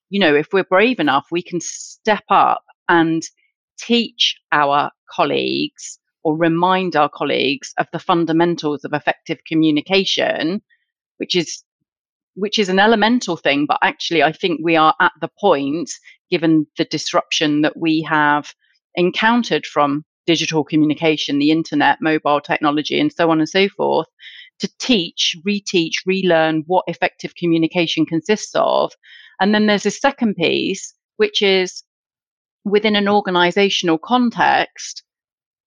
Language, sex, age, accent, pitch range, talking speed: English, female, 30-49, British, 160-215 Hz, 140 wpm